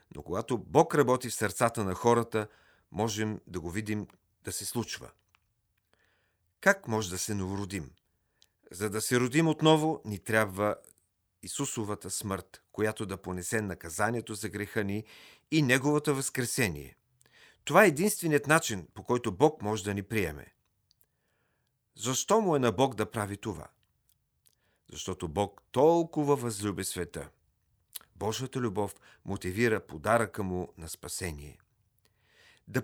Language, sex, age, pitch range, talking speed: Bulgarian, male, 50-69, 95-125 Hz, 130 wpm